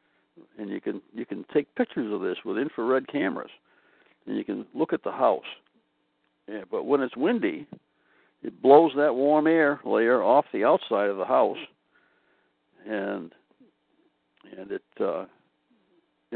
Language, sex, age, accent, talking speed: English, male, 60-79, American, 145 wpm